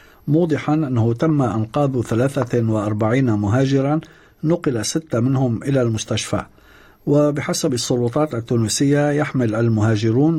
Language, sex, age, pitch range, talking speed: Arabic, male, 50-69, 110-145 Hz, 90 wpm